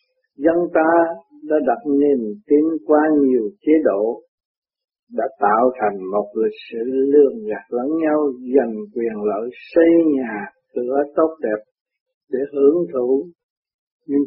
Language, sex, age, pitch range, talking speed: Vietnamese, male, 60-79, 140-175 Hz, 135 wpm